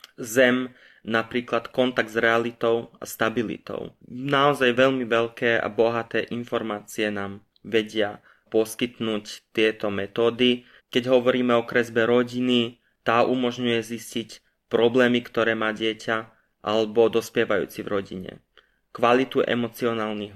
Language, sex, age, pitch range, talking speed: Slovak, male, 20-39, 110-125 Hz, 105 wpm